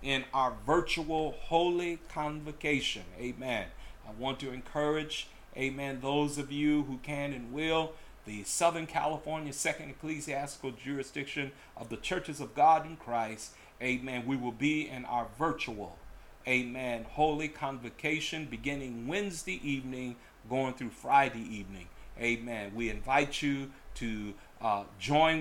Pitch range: 120-155 Hz